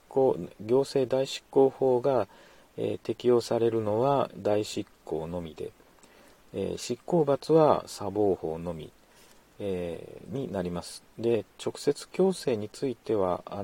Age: 40-59